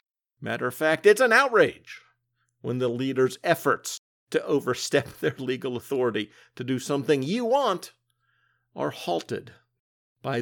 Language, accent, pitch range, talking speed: English, American, 120-185 Hz, 130 wpm